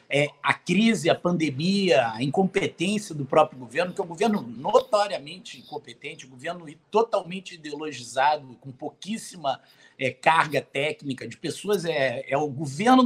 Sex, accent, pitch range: male, Brazilian, 150-200 Hz